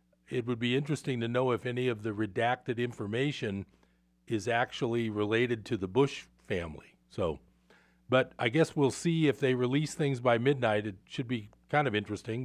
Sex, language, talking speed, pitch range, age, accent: male, English, 180 wpm, 105-130 Hz, 50-69, American